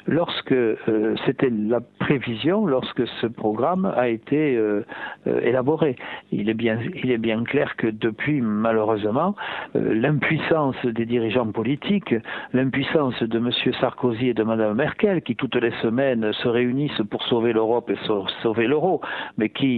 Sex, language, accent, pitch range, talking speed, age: male, French, French, 115-145 Hz, 150 wpm, 60-79